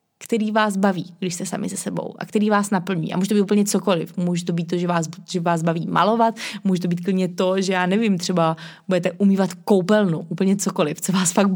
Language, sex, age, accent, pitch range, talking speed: Czech, female, 20-39, native, 175-200 Hz, 235 wpm